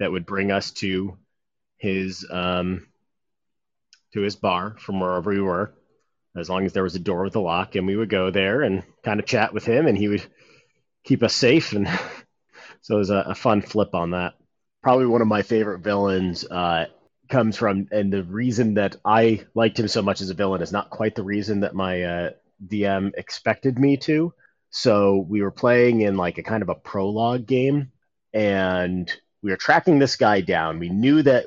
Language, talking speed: English, 200 wpm